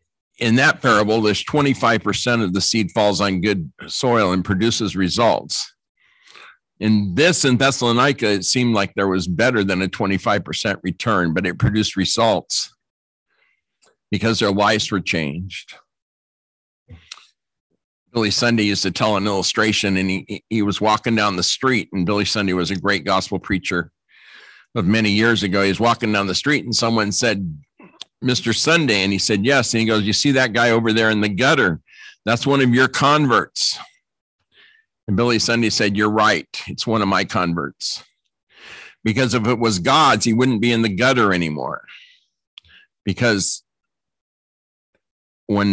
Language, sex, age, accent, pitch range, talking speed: English, male, 50-69, American, 95-115 Hz, 160 wpm